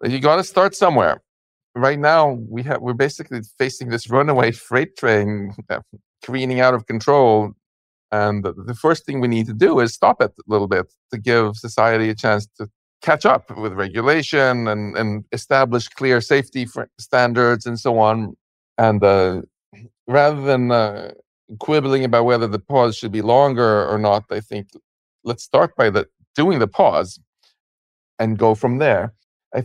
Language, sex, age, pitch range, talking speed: English, male, 50-69, 105-130 Hz, 165 wpm